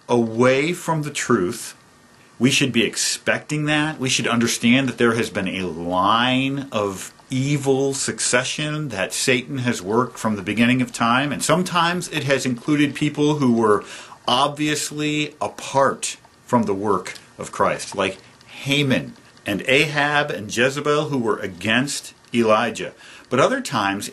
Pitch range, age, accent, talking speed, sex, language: 115-145 Hz, 50-69, American, 145 wpm, male, English